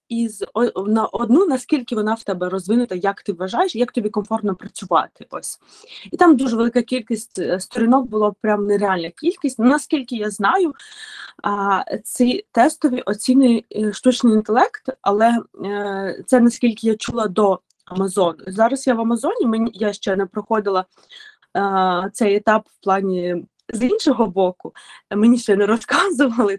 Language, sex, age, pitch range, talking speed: Ukrainian, female, 20-39, 195-245 Hz, 140 wpm